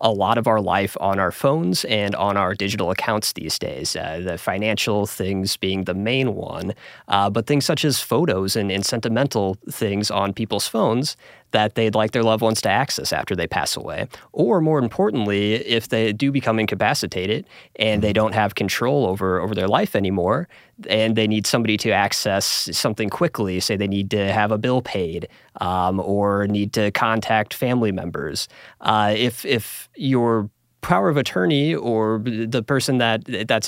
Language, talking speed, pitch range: English, 180 wpm, 100-120 Hz